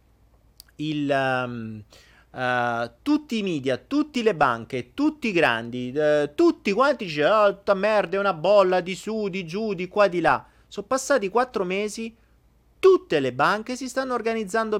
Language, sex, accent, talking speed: Italian, male, native, 160 wpm